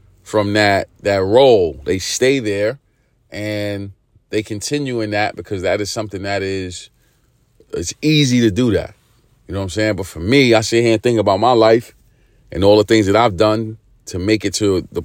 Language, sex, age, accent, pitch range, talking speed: English, male, 40-59, American, 100-115 Hz, 205 wpm